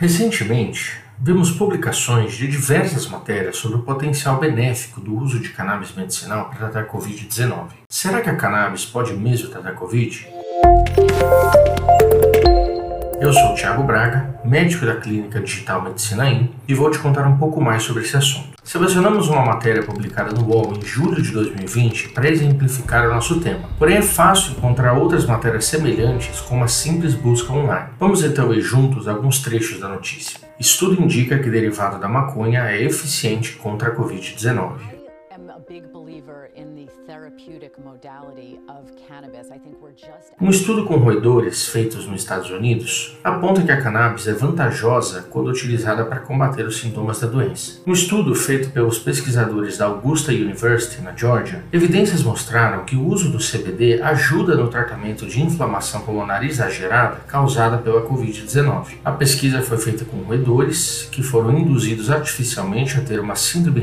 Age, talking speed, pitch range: 40-59, 150 wpm, 110-145 Hz